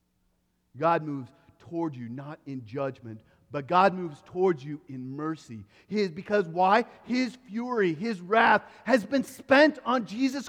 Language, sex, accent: English, male, American